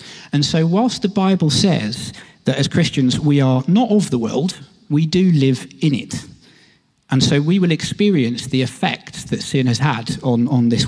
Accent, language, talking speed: British, English, 190 wpm